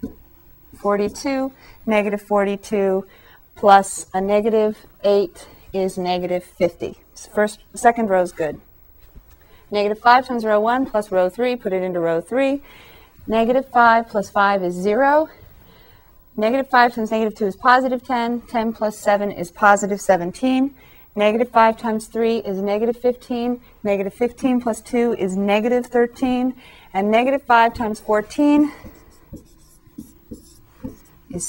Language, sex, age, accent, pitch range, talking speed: English, female, 40-59, American, 190-245 Hz, 130 wpm